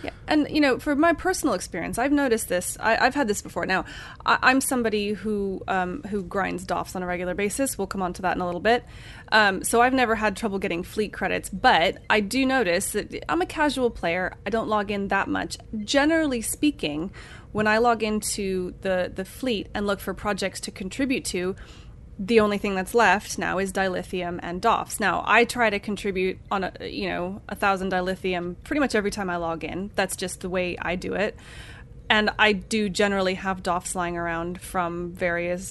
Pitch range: 185-240 Hz